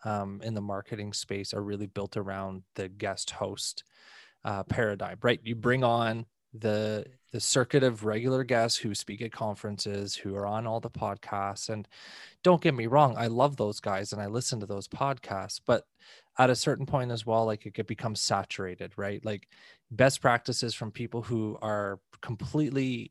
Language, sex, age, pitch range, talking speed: English, male, 20-39, 105-125 Hz, 180 wpm